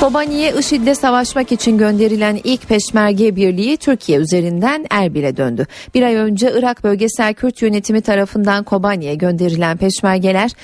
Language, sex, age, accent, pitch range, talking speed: Turkish, female, 40-59, native, 185-255 Hz, 125 wpm